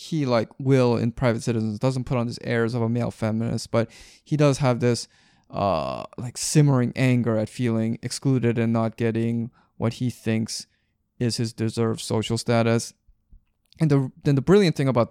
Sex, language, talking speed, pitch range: male, English, 180 wpm, 115-140 Hz